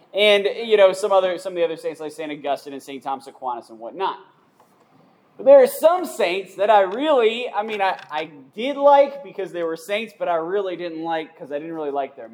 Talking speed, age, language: 240 wpm, 20-39, English